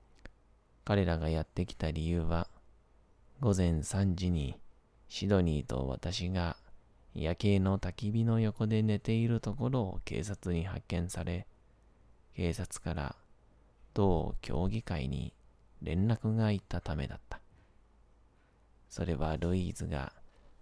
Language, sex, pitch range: Japanese, male, 85-105 Hz